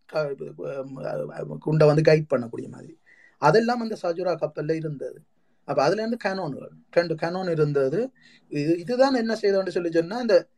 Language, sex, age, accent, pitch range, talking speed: Tamil, male, 20-39, native, 155-215 Hz, 100 wpm